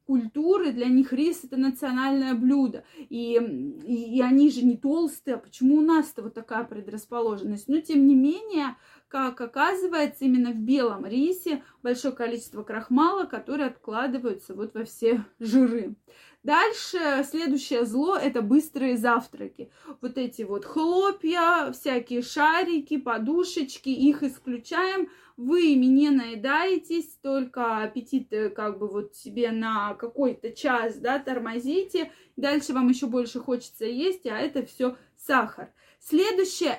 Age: 20-39